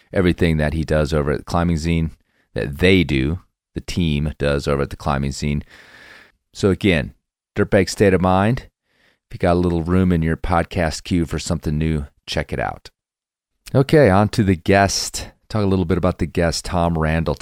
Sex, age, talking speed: male, 30-49, 195 wpm